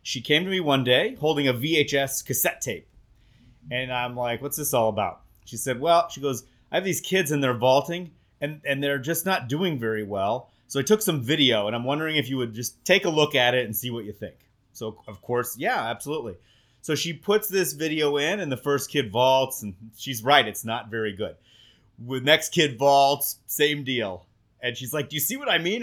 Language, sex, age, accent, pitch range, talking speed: English, male, 30-49, American, 115-145 Hz, 230 wpm